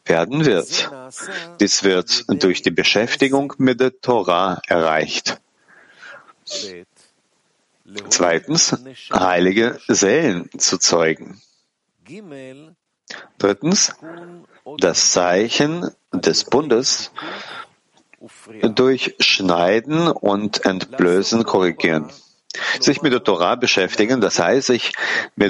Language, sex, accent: German, male, German